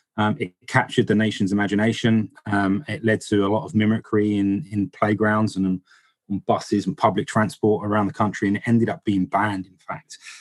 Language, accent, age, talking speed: English, British, 30-49, 195 wpm